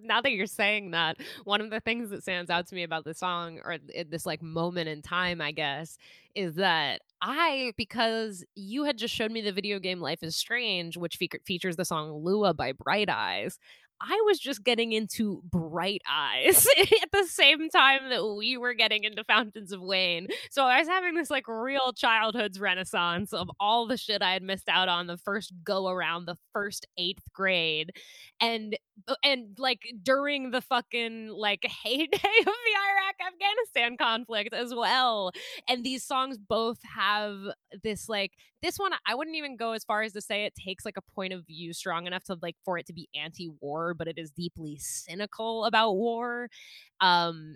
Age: 20-39